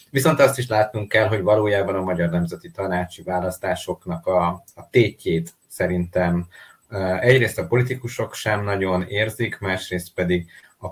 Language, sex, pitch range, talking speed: Hungarian, male, 90-115 Hz, 135 wpm